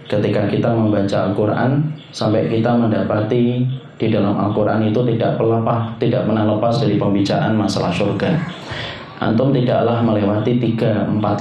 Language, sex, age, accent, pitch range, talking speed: Indonesian, male, 30-49, native, 105-120 Hz, 130 wpm